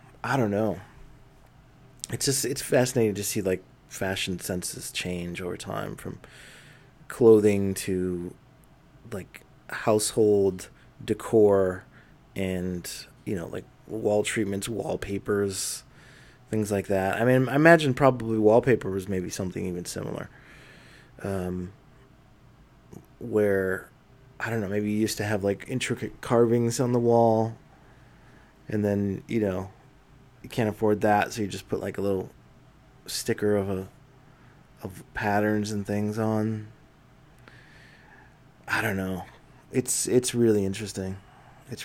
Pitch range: 100-130 Hz